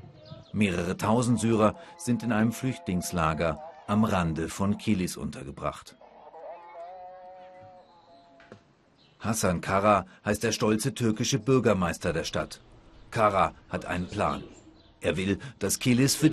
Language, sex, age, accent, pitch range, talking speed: German, male, 40-59, German, 110-150 Hz, 110 wpm